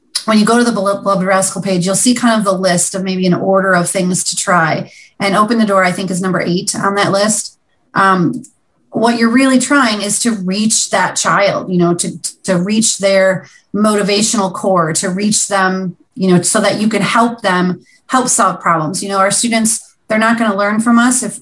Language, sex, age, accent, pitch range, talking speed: English, female, 30-49, American, 190-225 Hz, 220 wpm